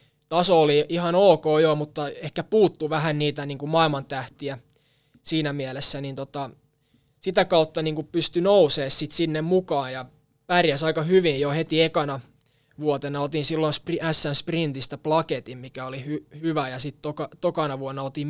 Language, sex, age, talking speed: Finnish, male, 20-39, 155 wpm